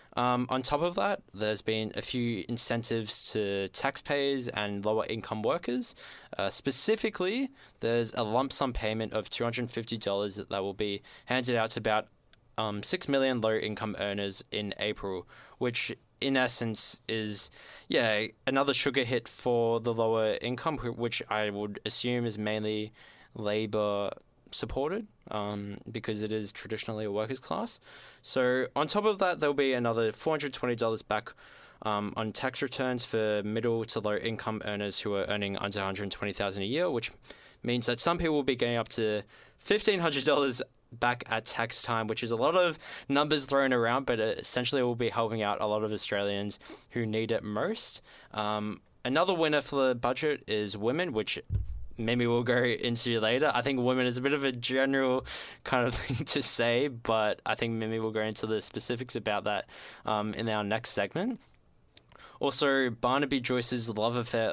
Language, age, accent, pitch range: English, 20-39, Australian, 110-130 Hz